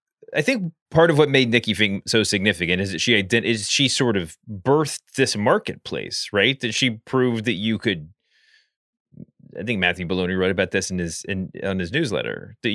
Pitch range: 105-130 Hz